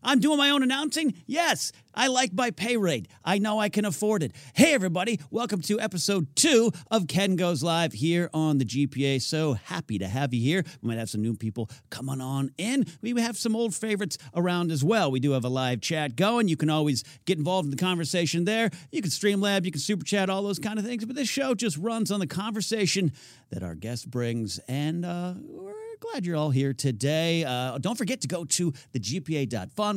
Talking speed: 220 wpm